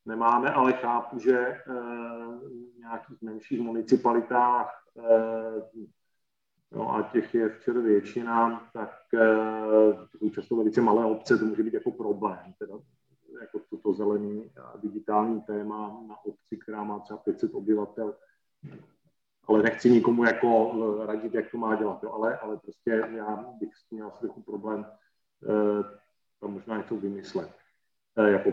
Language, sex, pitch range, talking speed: Czech, male, 110-125 Hz, 135 wpm